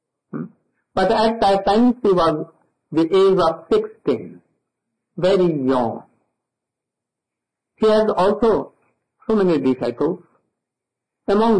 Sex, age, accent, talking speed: male, 60-79, Indian, 100 wpm